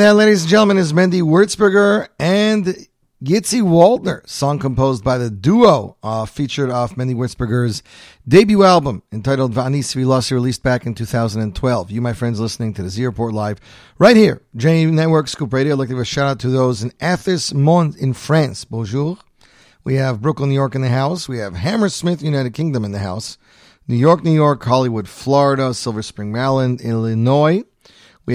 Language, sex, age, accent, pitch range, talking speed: English, male, 40-59, American, 115-155 Hz, 180 wpm